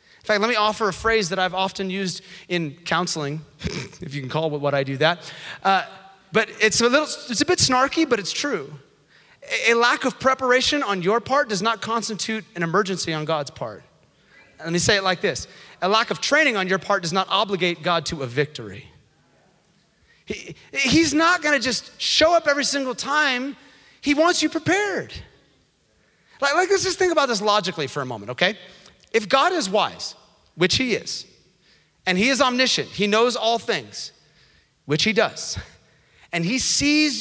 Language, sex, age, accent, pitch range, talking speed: English, male, 30-49, American, 170-240 Hz, 185 wpm